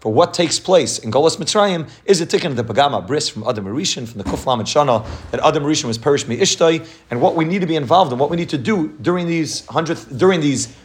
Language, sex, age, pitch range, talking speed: English, male, 30-49, 115-160 Hz, 250 wpm